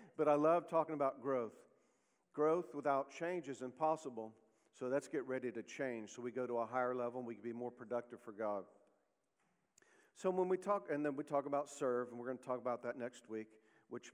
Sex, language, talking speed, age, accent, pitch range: male, English, 220 wpm, 50-69, American, 120-155 Hz